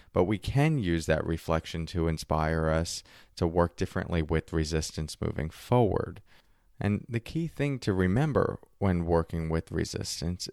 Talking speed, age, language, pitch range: 150 wpm, 30-49, English, 85-110 Hz